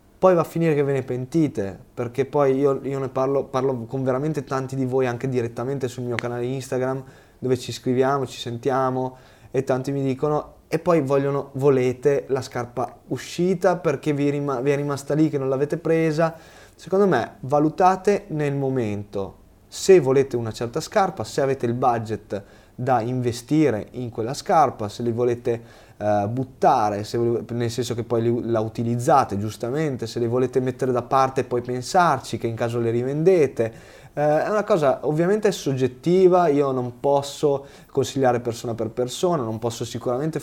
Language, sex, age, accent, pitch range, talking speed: Italian, male, 20-39, native, 120-145 Hz, 165 wpm